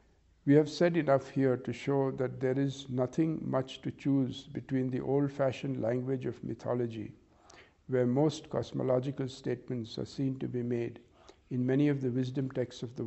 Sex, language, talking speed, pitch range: male, English, 170 wpm, 120-140 Hz